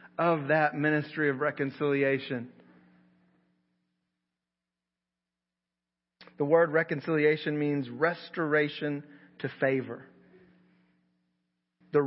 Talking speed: 65 wpm